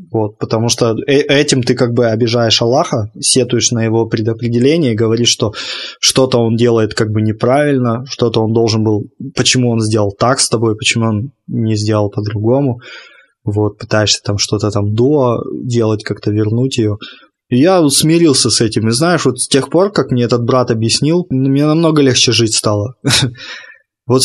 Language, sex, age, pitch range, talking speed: Russian, male, 20-39, 110-140 Hz, 175 wpm